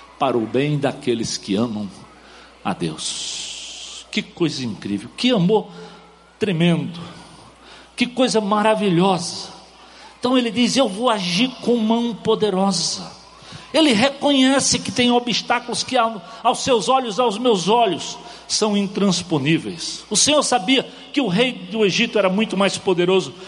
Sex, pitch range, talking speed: male, 150-215 Hz, 135 wpm